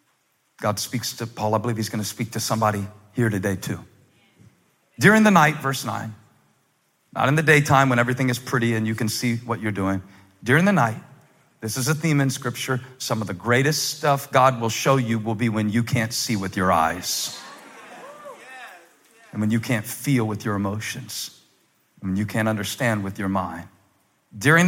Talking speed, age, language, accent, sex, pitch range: 190 wpm, 40-59, English, American, male, 110-140 Hz